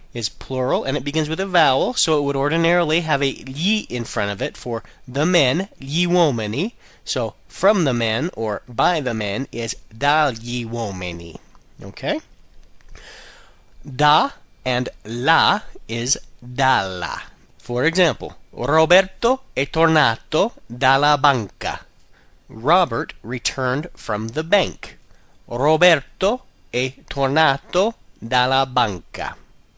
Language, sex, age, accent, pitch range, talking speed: Italian, male, 30-49, American, 120-165 Hz, 120 wpm